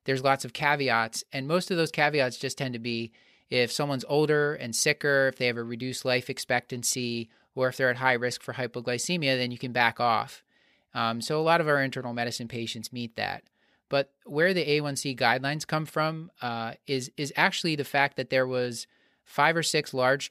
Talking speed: 205 wpm